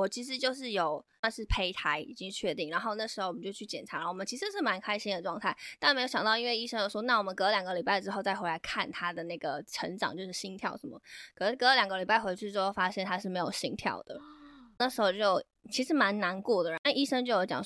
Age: 20-39